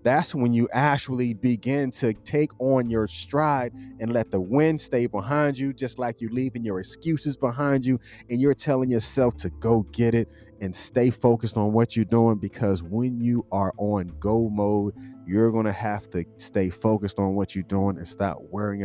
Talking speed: 195 wpm